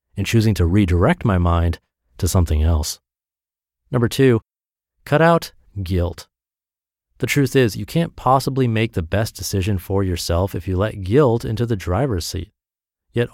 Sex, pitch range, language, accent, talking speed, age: male, 95-125 Hz, English, American, 160 wpm, 30-49